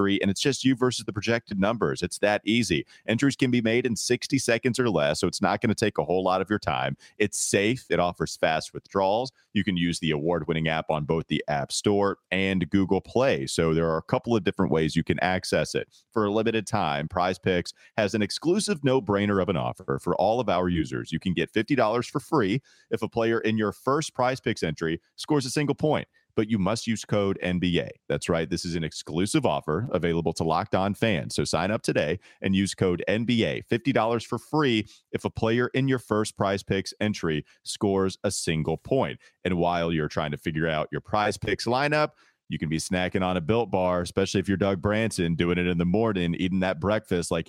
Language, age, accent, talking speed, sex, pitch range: English, 30-49, American, 220 wpm, male, 90-115 Hz